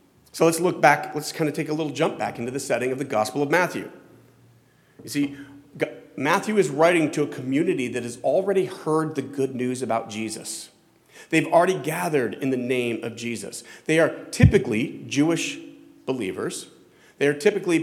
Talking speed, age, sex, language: 180 wpm, 40-59, male, English